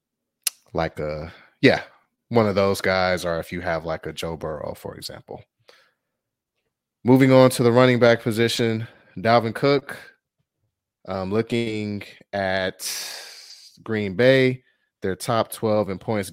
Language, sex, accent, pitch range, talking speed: English, male, American, 90-110 Hz, 130 wpm